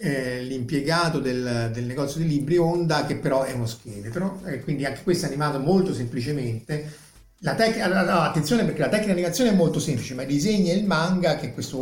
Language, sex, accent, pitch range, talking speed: Italian, male, native, 125-170 Hz, 200 wpm